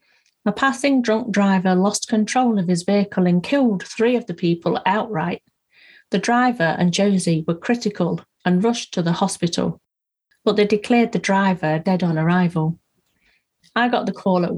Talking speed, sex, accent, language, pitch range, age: 165 wpm, female, British, English, 180-215 Hz, 40-59